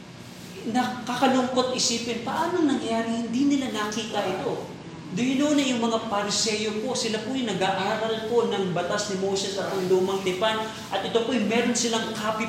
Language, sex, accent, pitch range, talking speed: Filipino, male, native, 190-230 Hz, 180 wpm